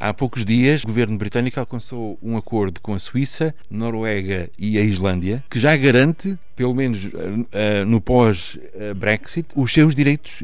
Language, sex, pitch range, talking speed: Portuguese, male, 105-130 Hz, 150 wpm